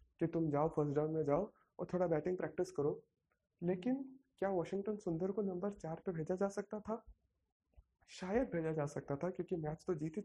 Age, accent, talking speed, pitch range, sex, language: 20-39, native, 215 wpm, 160-195 Hz, male, Hindi